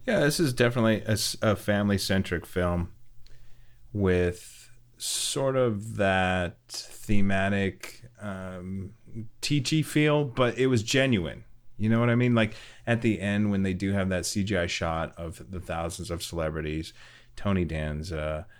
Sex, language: male, English